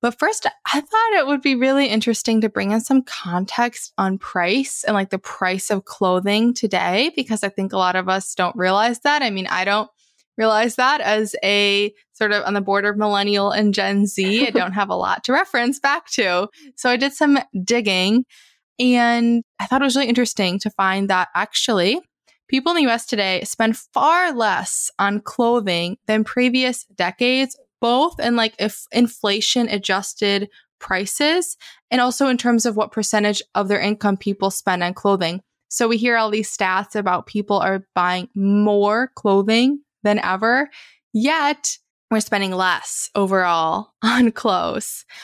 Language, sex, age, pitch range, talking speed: English, female, 20-39, 200-245 Hz, 175 wpm